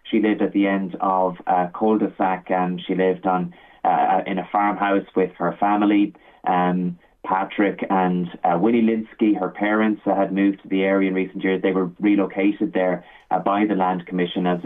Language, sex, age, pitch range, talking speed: English, male, 30-49, 95-105 Hz, 190 wpm